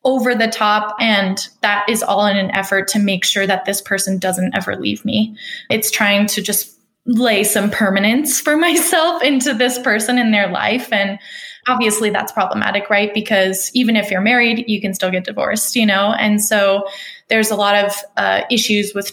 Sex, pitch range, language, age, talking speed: female, 200-240 Hz, English, 10-29, 190 wpm